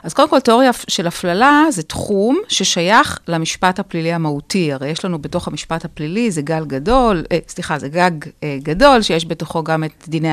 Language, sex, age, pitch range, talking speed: Hebrew, female, 40-59, 160-225 Hz, 185 wpm